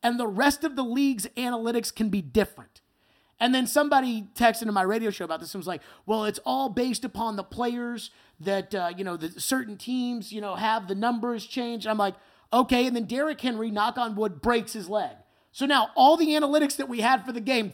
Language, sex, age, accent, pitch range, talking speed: English, male, 30-49, American, 220-310 Hz, 225 wpm